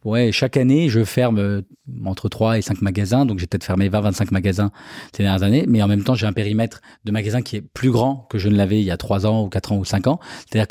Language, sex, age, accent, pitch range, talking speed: French, male, 20-39, French, 115-130 Hz, 275 wpm